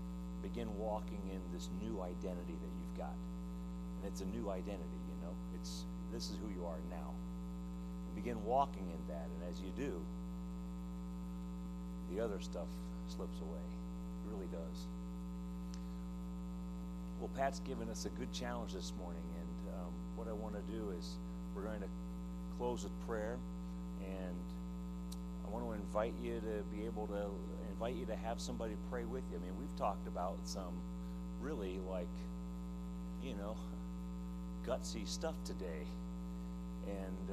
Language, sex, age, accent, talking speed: English, male, 40-59, American, 150 wpm